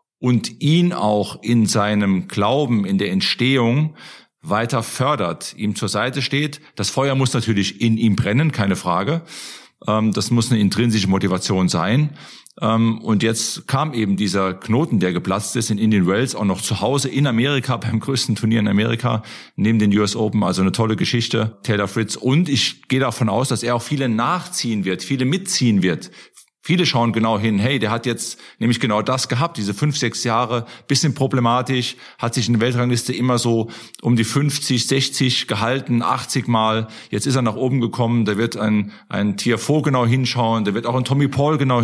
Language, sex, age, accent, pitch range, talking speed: German, male, 40-59, German, 110-130 Hz, 185 wpm